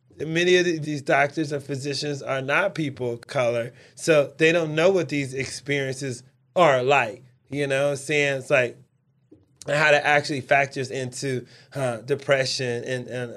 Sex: male